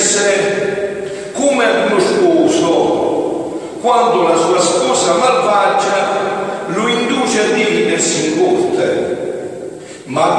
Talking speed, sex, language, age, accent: 100 wpm, male, Italian, 50-69, native